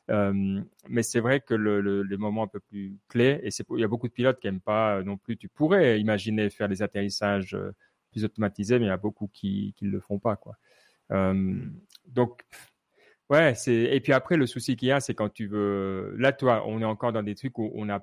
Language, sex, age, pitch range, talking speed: French, male, 30-49, 100-125 Hz, 240 wpm